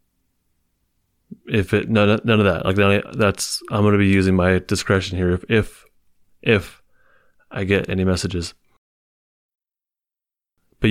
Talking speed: 130 wpm